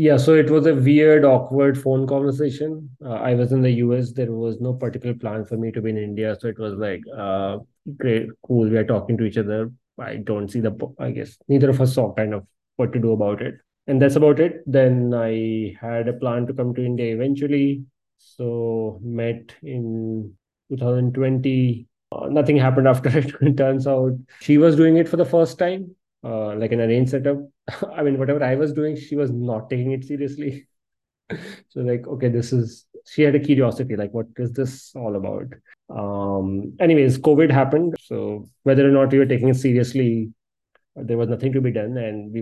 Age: 20-39